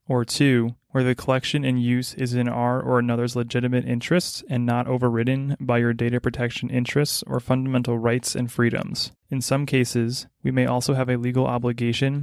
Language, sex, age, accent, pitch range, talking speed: English, male, 30-49, American, 120-130 Hz, 180 wpm